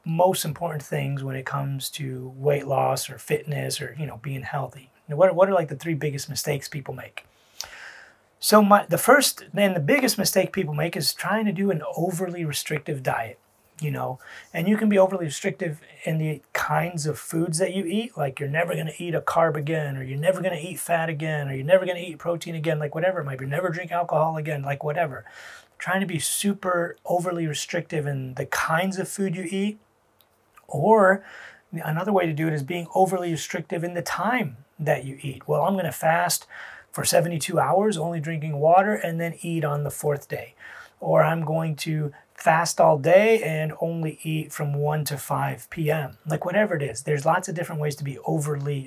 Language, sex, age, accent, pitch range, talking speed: English, male, 30-49, American, 145-180 Hz, 210 wpm